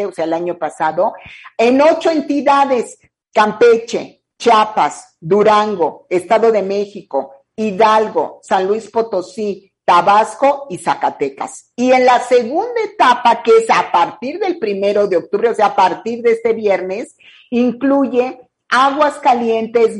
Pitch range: 190-260 Hz